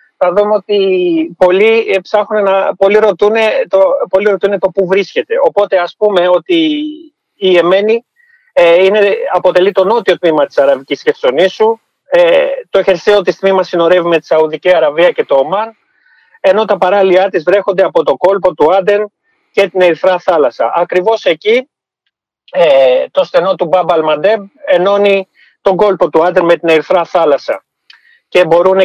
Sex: male